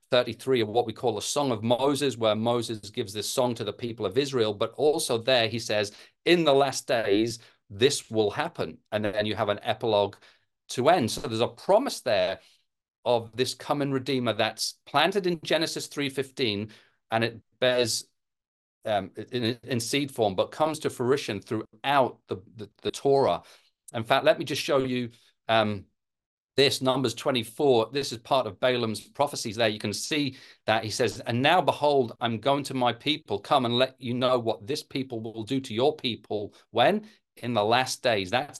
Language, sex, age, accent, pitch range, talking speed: English, male, 40-59, British, 110-135 Hz, 190 wpm